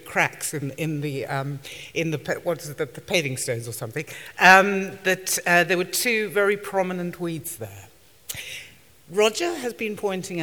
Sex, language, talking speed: female, English, 175 wpm